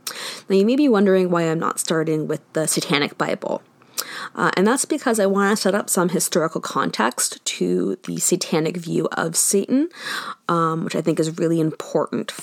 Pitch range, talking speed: 165-195 Hz, 185 wpm